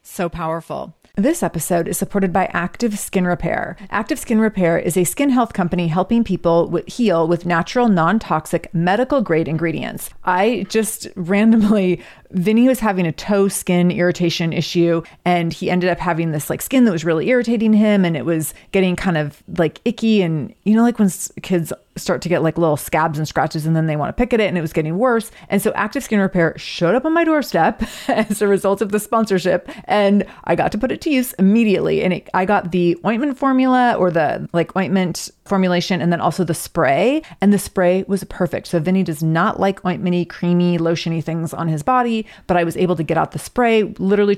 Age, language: 30-49, English